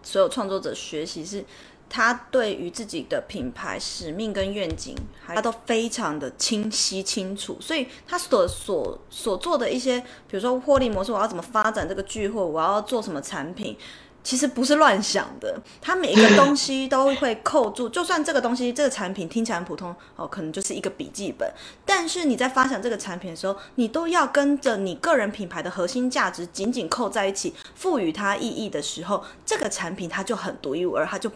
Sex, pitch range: female, 195-275 Hz